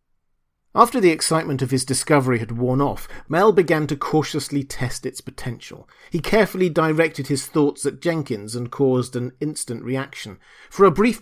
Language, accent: English, British